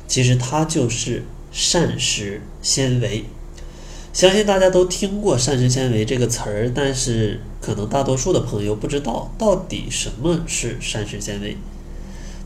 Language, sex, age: Chinese, male, 20-39